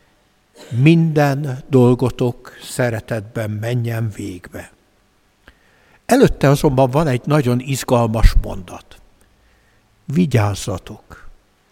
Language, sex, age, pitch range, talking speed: Hungarian, male, 60-79, 120-180 Hz, 65 wpm